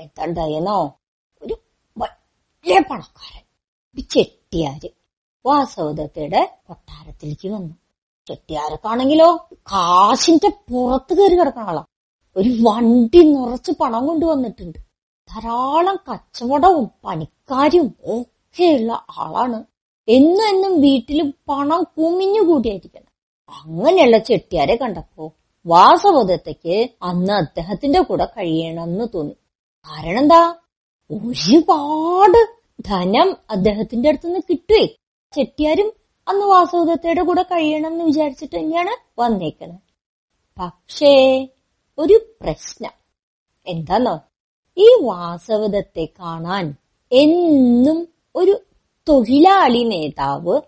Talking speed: 75 wpm